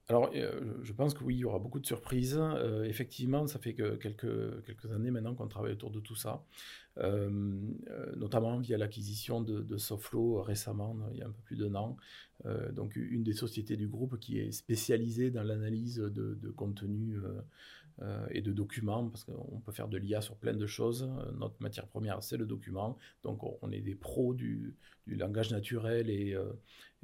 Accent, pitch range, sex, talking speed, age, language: French, 105-125 Hz, male, 200 wpm, 40-59, French